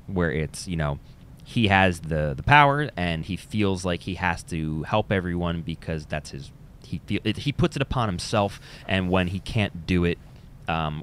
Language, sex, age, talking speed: English, male, 30-49, 195 wpm